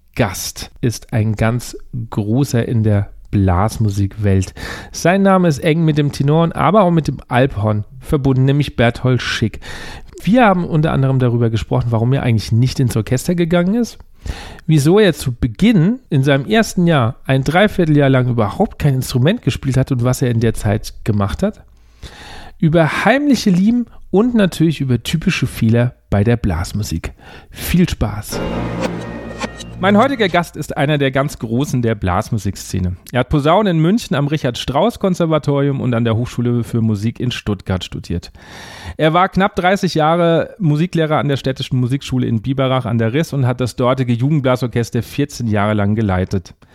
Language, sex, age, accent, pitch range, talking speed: German, male, 40-59, German, 115-160 Hz, 165 wpm